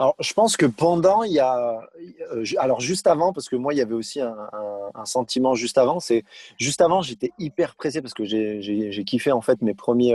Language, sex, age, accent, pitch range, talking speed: French, male, 20-39, French, 120-170 Hz, 235 wpm